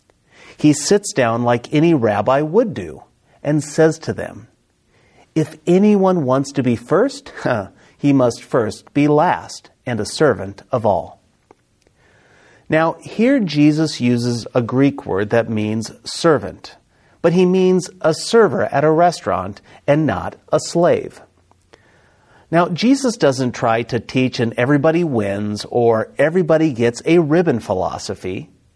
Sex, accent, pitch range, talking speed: male, American, 120-180 Hz, 135 wpm